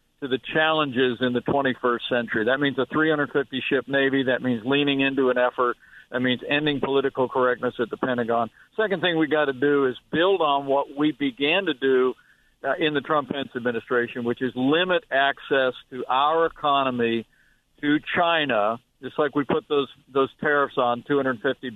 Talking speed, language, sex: 170 wpm, English, male